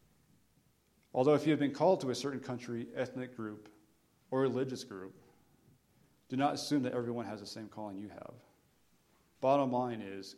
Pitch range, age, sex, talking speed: 110-130 Hz, 40-59, male, 170 wpm